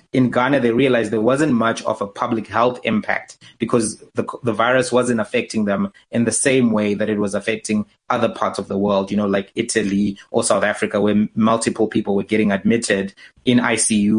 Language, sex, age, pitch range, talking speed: English, male, 30-49, 105-120 Hz, 200 wpm